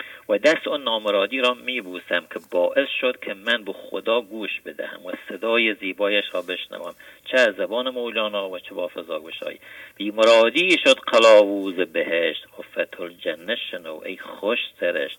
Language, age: English, 50-69